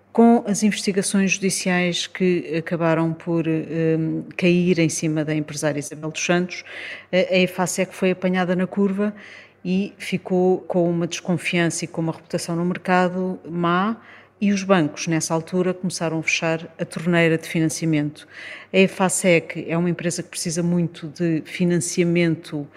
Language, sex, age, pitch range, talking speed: Portuguese, female, 40-59, 160-185 Hz, 145 wpm